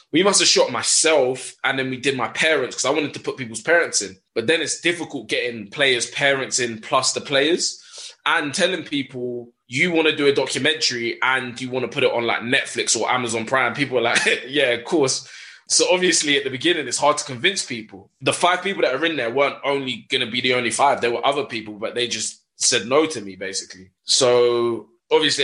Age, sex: 20-39, male